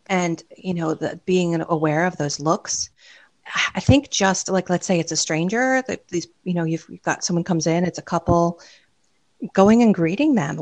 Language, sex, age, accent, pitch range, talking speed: English, female, 40-59, American, 155-205 Hz, 200 wpm